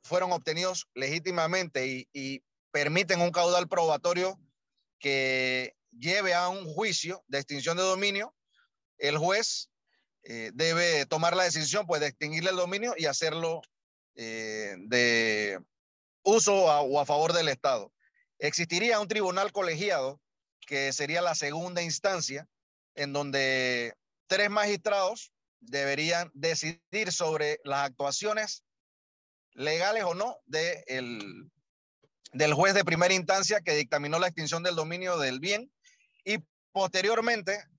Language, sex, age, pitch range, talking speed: Spanish, male, 30-49, 145-185 Hz, 120 wpm